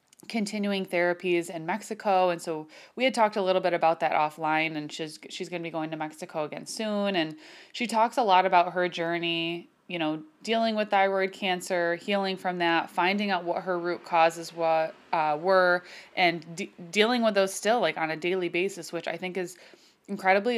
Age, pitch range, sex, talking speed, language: 20-39, 165-200 Hz, female, 190 wpm, English